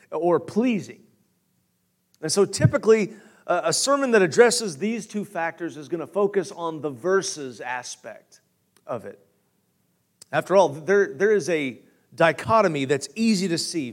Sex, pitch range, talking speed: male, 145-205 Hz, 140 wpm